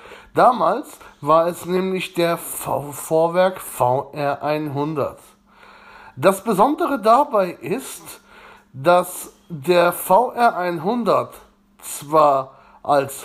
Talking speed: 70 wpm